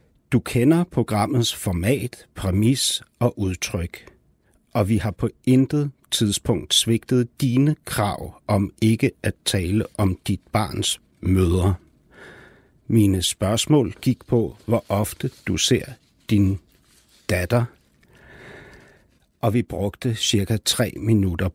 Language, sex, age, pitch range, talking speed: Danish, male, 60-79, 95-120 Hz, 110 wpm